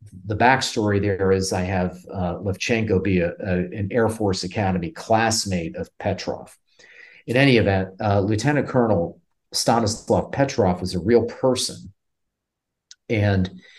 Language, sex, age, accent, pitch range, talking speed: English, male, 40-59, American, 90-115 Hz, 125 wpm